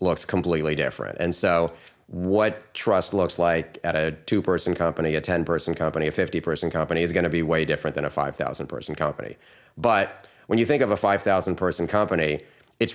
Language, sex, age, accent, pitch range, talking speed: English, male, 30-49, American, 80-95 Hz, 195 wpm